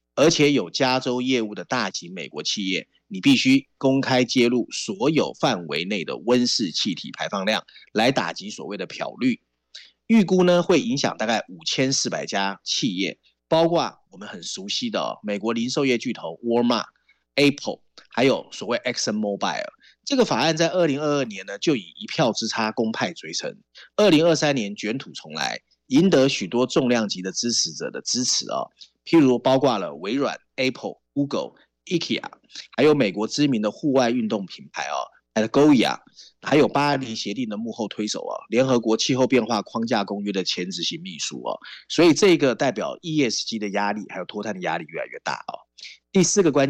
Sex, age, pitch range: male, 30-49, 110-155 Hz